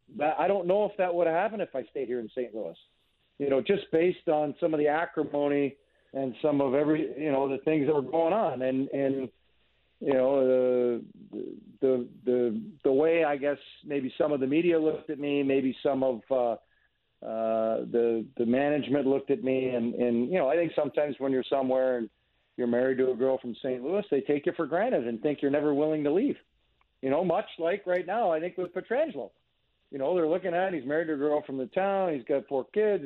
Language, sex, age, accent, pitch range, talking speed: English, male, 50-69, American, 130-170 Hz, 225 wpm